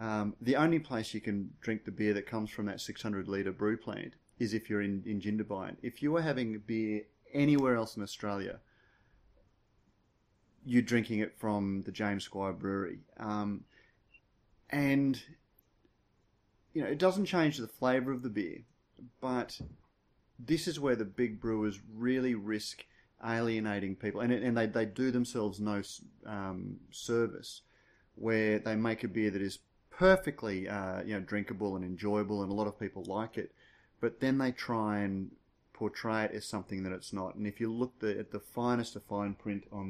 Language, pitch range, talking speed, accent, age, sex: English, 100-115 Hz, 175 wpm, Australian, 30-49, male